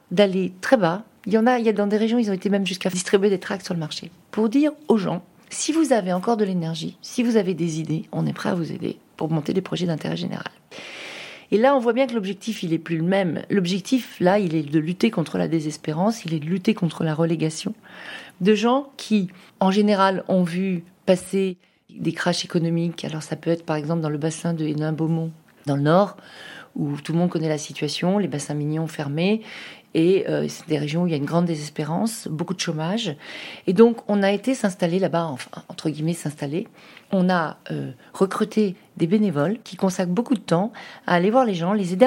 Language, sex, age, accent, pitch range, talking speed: French, female, 40-59, French, 165-215 Hz, 225 wpm